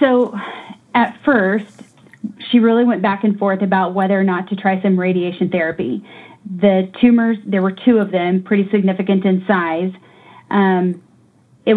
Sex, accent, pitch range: female, American, 185-210 Hz